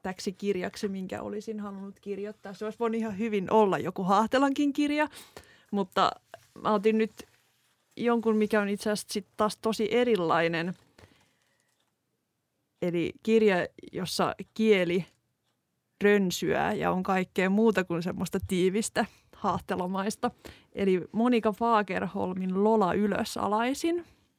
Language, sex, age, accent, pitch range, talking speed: Finnish, female, 20-39, native, 185-215 Hz, 115 wpm